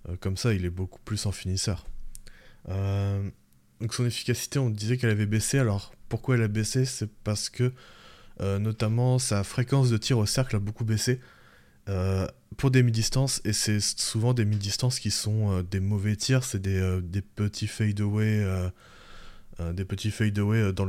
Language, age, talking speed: French, 20-39, 185 wpm